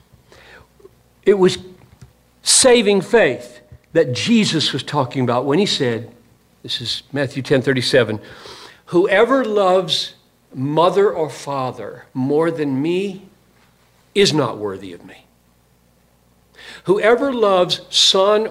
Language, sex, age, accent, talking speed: English, male, 60-79, American, 105 wpm